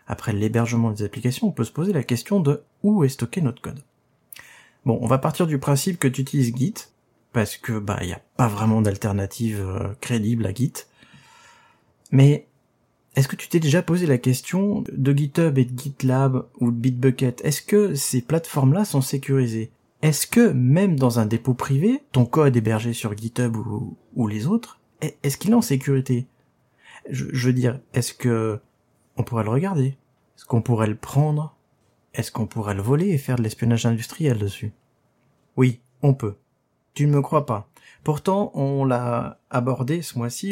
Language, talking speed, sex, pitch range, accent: French, 180 wpm, male, 115-145 Hz, French